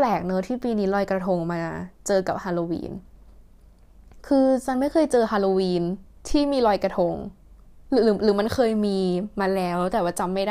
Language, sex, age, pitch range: Thai, female, 10-29, 195-260 Hz